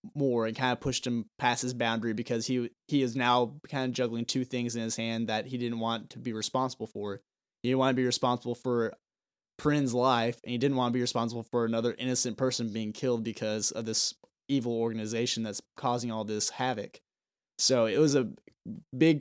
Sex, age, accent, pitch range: male, 20-39, American, 115-130 Hz